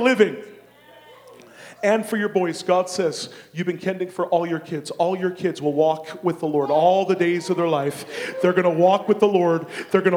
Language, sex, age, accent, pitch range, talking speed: English, male, 40-59, American, 185-235 Hz, 220 wpm